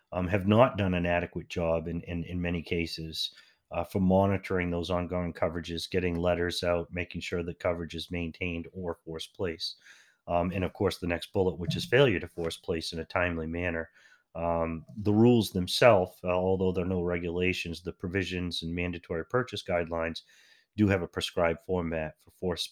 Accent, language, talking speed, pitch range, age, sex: American, English, 185 wpm, 85-95 Hz, 30-49, male